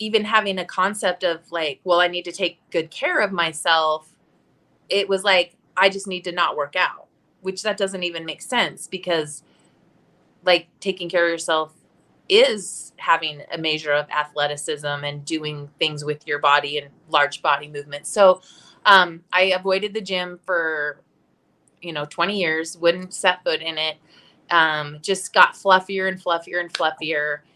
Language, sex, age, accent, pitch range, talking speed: English, female, 20-39, American, 150-185 Hz, 170 wpm